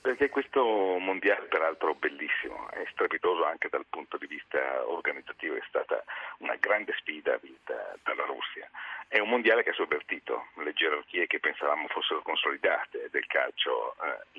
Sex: male